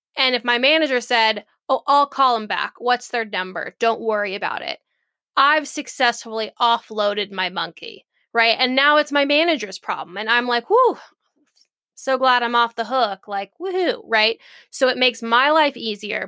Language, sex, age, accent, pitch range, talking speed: English, female, 10-29, American, 225-270 Hz, 175 wpm